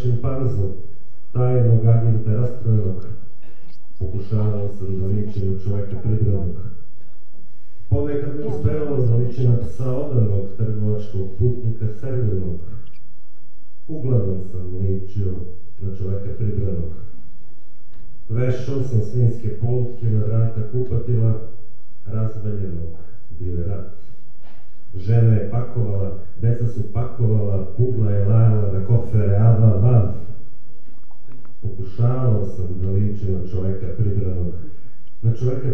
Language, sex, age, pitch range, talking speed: Ukrainian, male, 40-59, 95-120 Hz, 95 wpm